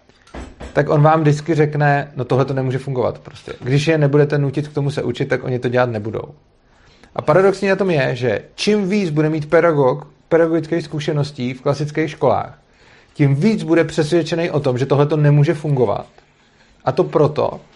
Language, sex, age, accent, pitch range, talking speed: Czech, male, 30-49, native, 130-155 Hz, 175 wpm